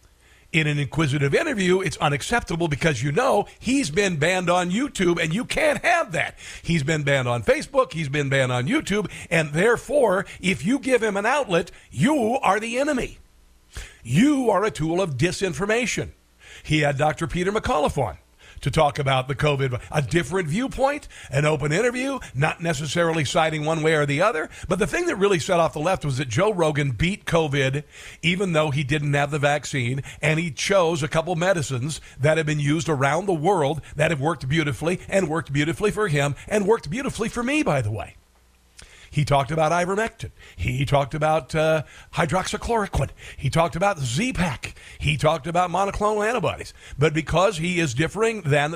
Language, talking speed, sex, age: English, 180 wpm, male, 50-69